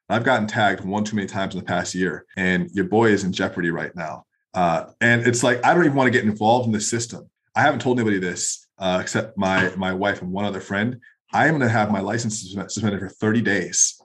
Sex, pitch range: male, 100-125 Hz